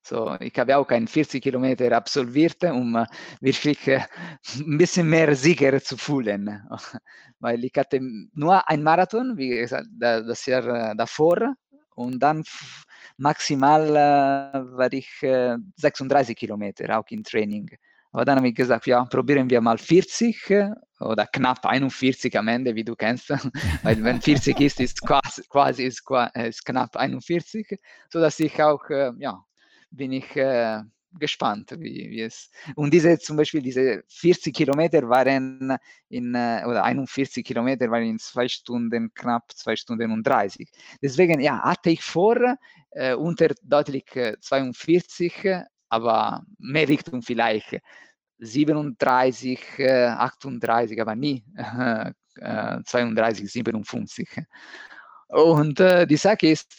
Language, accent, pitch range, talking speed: German, Italian, 120-155 Hz, 130 wpm